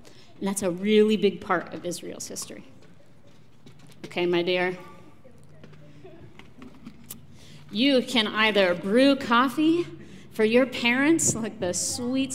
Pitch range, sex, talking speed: 185-275 Hz, female, 110 wpm